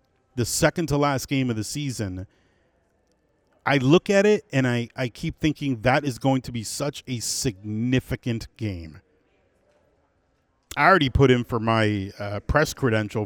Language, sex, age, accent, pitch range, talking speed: English, male, 40-59, American, 110-140 Hz, 150 wpm